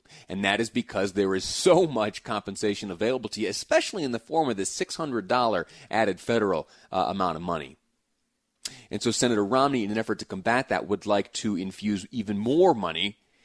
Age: 30-49